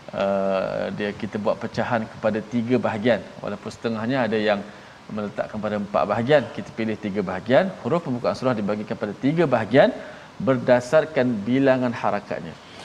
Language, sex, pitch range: Malayalam, male, 115-135 Hz